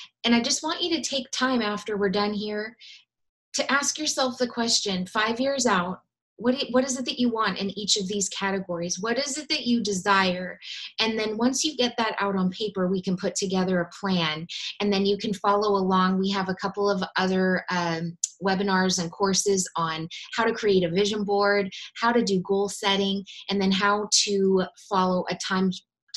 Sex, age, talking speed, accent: female, 20-39, 205 wpm, American